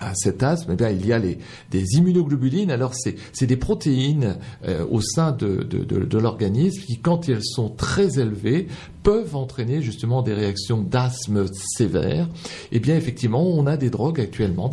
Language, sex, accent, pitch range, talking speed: French, male, French, 105-145 Hz, 185 wpm